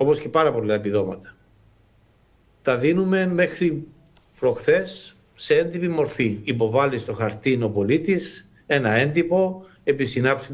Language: Greek